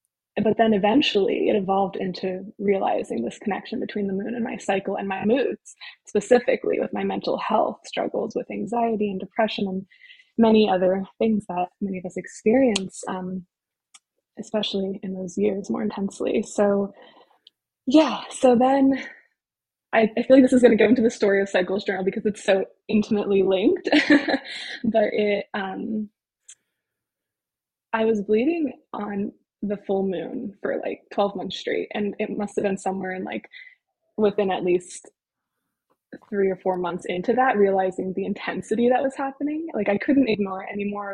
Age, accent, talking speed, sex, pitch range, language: 20-39, American, 165 wpm, female, 195-245 Hz, English